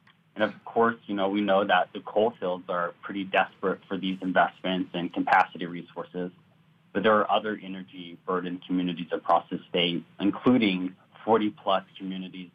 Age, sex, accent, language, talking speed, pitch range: 30-49, male, American, English, 160 wpm, 90-120 Hz